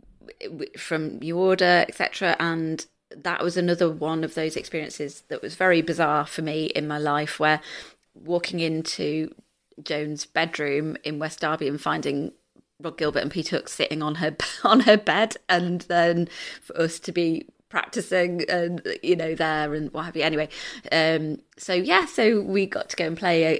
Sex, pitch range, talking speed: female, 155-190 Hz, 175 wpm